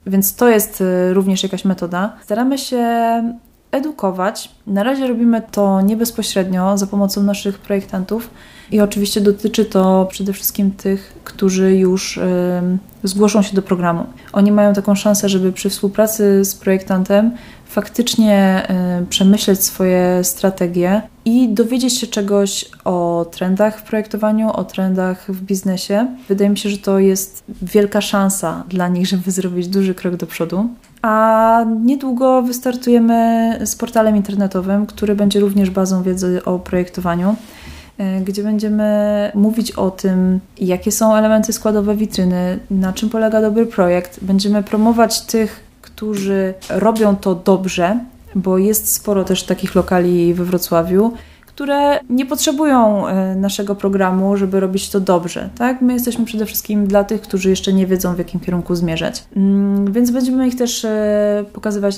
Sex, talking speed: female, 140 wpm